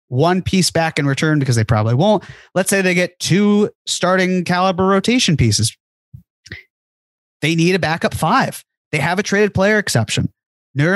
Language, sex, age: English, male, 30-49